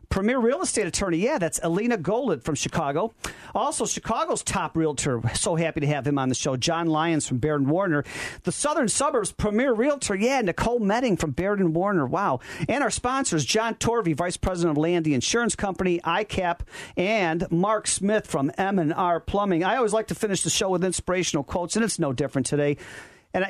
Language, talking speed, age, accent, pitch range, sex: English, 185 wpm, 40-59, American, 155-205 Hz, male